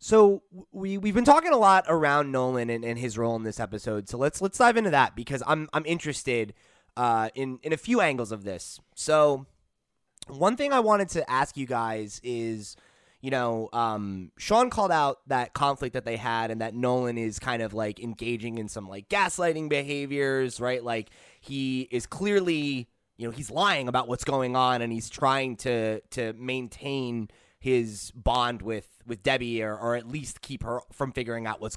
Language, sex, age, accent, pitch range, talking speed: English, male, 20-39, American, 115-150 Hz, 195 wpm